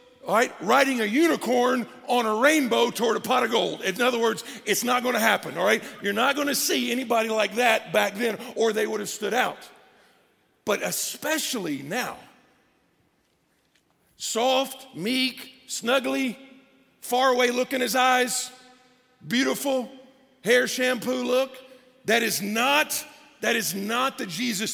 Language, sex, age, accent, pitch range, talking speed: English, male, 50-69, American, 200-255 Hz, 145 wpm